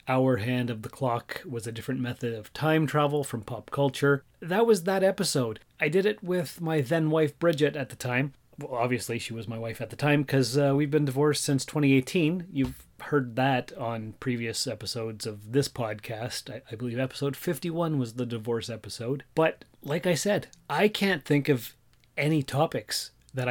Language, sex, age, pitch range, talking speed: English, male, 30-49, 120-145 Hz, 185 wpm